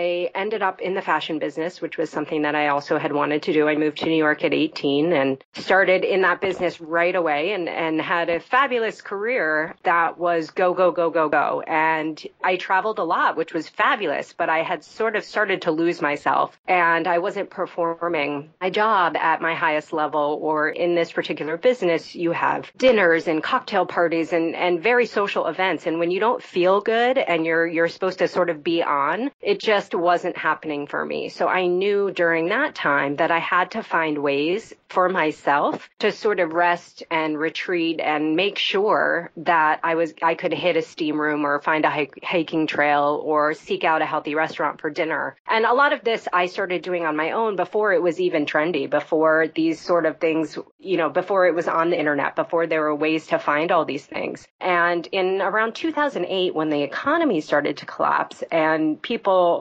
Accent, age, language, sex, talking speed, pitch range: American, 30-49, English, female, 205 wpm, 155-185 Hz